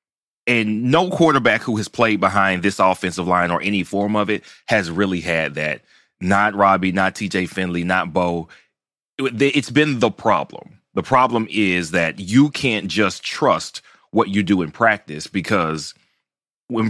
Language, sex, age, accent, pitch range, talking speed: English, male, 30-49, American, 95-135 Hz, 160 wpm